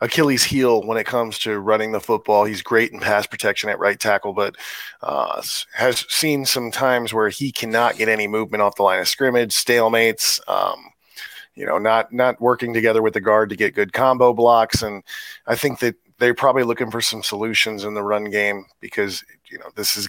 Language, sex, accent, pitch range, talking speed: English, male, American, 105-125 Hz, 205 wpm